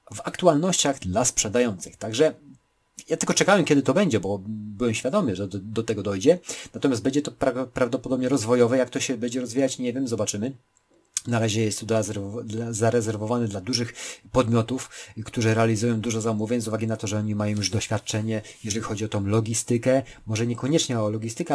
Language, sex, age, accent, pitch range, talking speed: Polish, male, 40-59, native, 110-130 Hz, 170 wpm